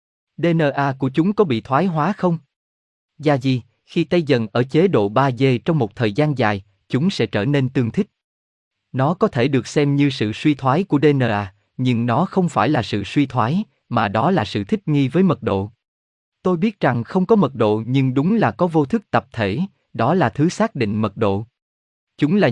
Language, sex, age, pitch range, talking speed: Vietnamese, male, 20-39, 110-165 Hz, 215 wpm